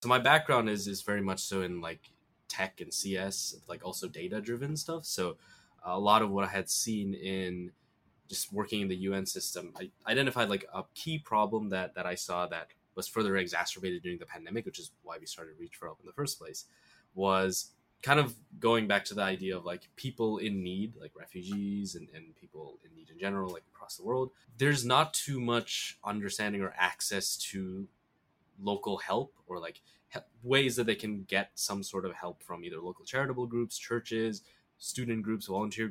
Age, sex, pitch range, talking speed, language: 20-39, male, 95-110 Hz, 195 wpm, English